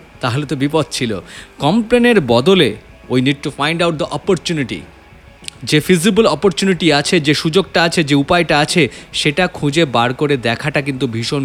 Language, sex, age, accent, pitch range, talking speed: Bengali, male, 30-49, native, 135-205 Hz, 155 wpm